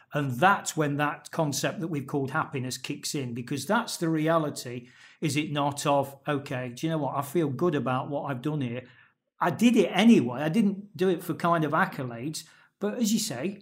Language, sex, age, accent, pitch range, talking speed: English, male, 40-59, British, 145-185 Hz, 210 wpm